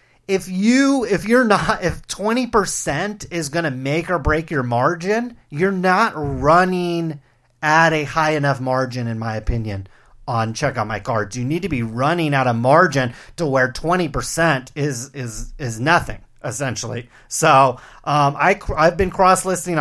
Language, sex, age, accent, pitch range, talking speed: English, male, 30-49, American, 135-190 Hz, 160 wpm